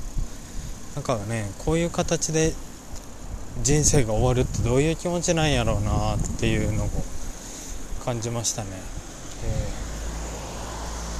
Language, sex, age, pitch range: Japanese, male, 20-39, 95-130 Hz